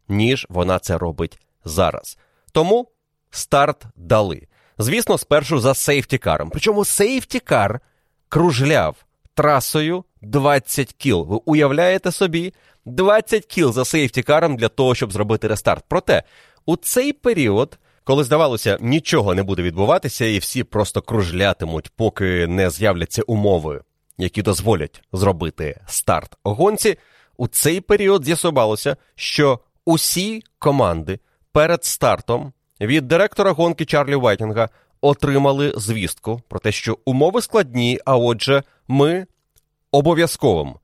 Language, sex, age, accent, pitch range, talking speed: Ukrainian, male, 30-49, native, 105-155 Hz, 115 wpm